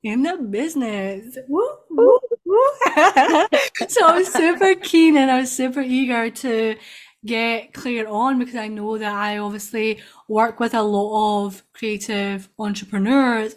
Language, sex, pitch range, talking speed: English, female, 205-245 Hz, 145 wpm